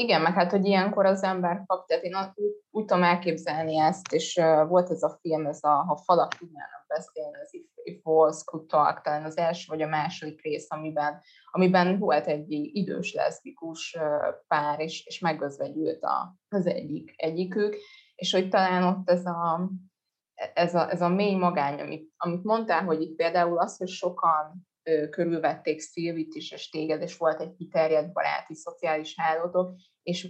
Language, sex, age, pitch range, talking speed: Hungarian, female, 20-39, 155-185 Hz, 170 wpm